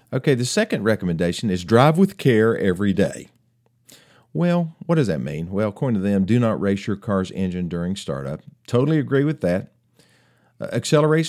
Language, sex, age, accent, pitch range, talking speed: English, male, 50-69, American, 95-130 Hz, 170 wpm